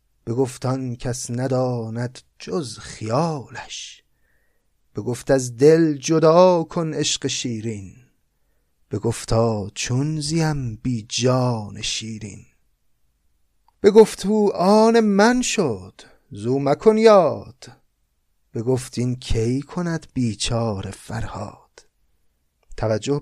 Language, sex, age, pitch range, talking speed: Persian, male, 30-49, 110-145 Hz, 85 wpm